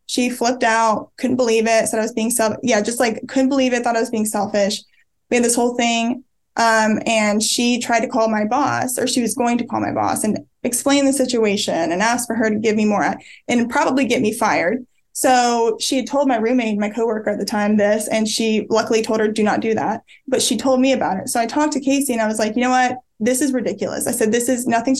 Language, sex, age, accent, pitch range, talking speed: English, female, 20-39, American, 220-255 Hz, 255 wpm